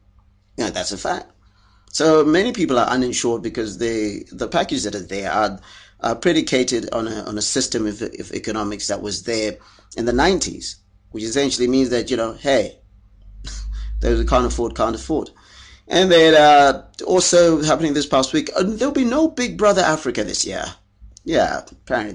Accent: British